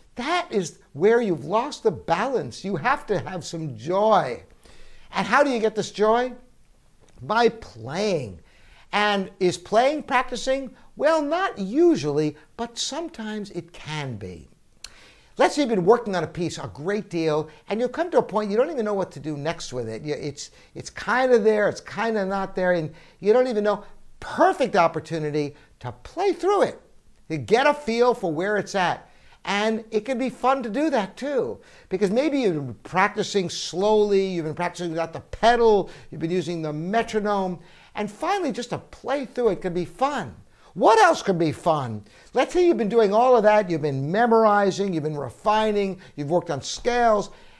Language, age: English, 60-79